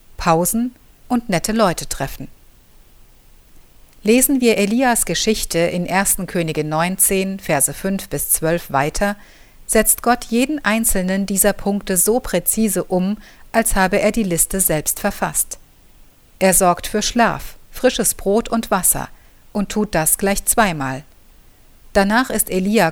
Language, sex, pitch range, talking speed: German, female, 175-220 Hz, 130 wpm